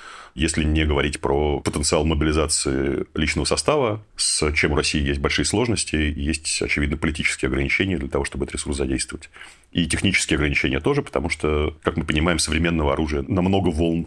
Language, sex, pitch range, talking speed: Russian, male, 75-90 Hz, 160 wpm